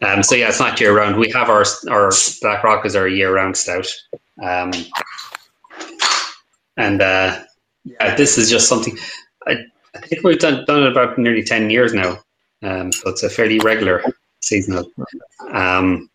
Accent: Irish